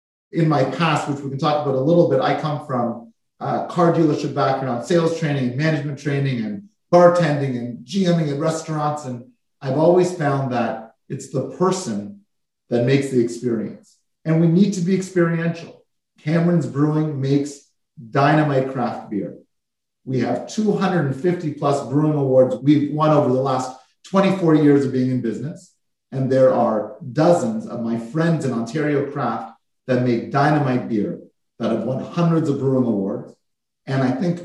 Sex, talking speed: male, 160 wpm